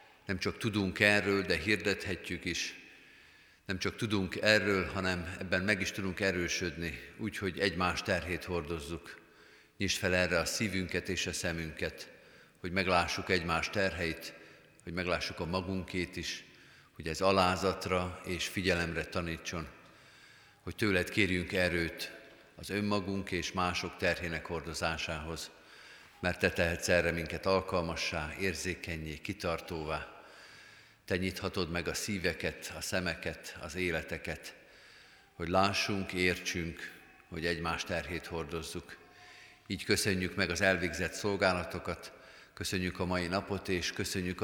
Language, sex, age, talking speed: Hungarian, male, 50-69, 120 wpm